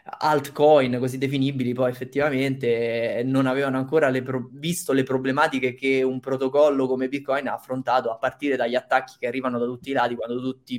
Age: 20-39